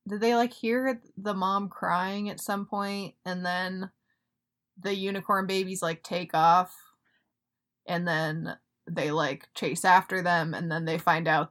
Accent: American